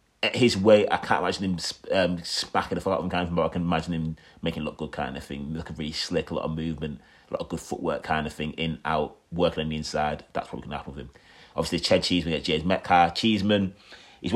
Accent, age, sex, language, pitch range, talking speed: British, 30-49, male, English, 85-100 Hz, 255 wpm